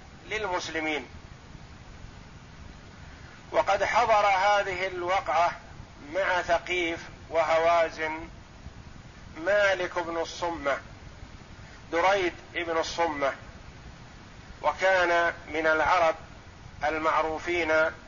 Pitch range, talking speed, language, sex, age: 155-185 Hz, 60 wpm, Arabic, male, 50-69